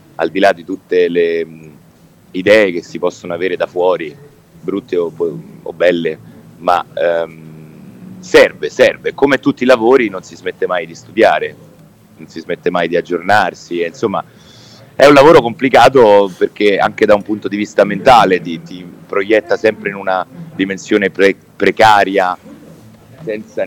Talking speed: 155 wpm